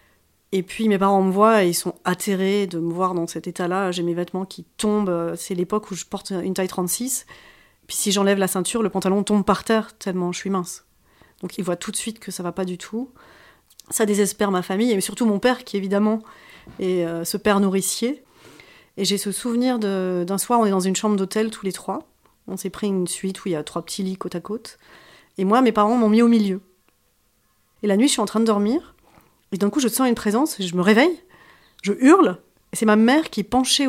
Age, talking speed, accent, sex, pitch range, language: 30-49, 245 wpm, French, female, 190-235 Hz, French